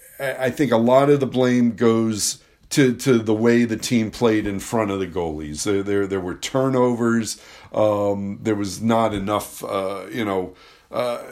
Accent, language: American, English